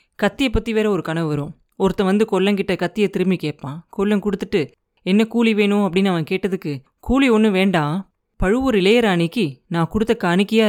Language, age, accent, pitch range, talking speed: Tamil, 20-39, native, 165-215 Hz, 155 wpm